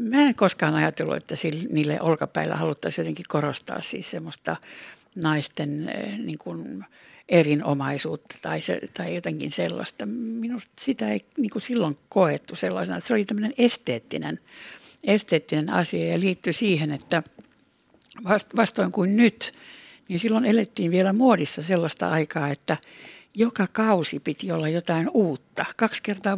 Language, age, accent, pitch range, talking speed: Finnish, 60-79, native, 160-210 Hz, 125 wpm